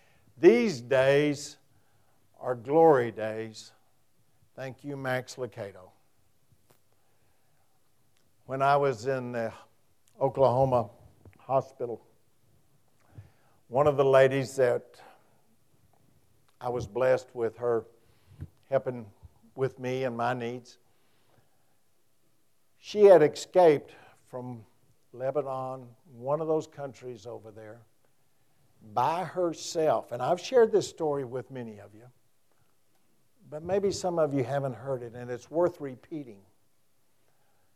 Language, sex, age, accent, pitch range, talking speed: English, male, 60-79, American, 120-155 Hz, 105 wpm